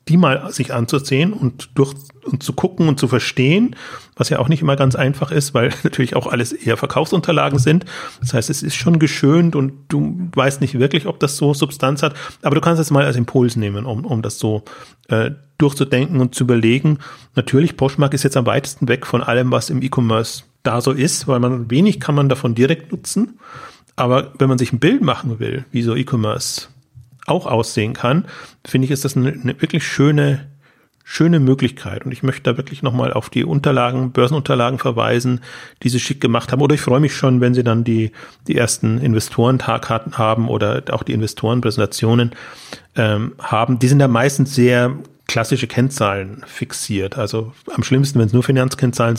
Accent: German